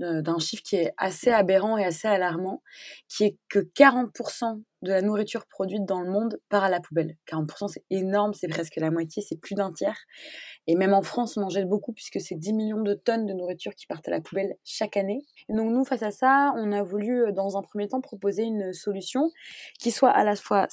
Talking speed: 230 wpm